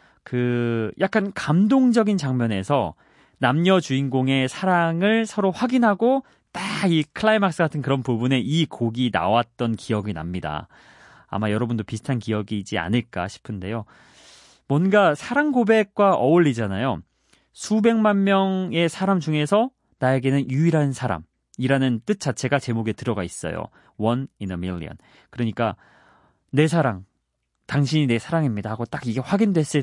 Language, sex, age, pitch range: Korean, male, 30-49, 110-165 Hz